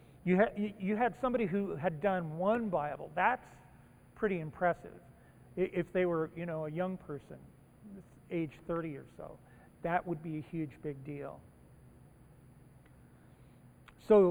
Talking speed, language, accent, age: 130 wpm, English, American, 40-59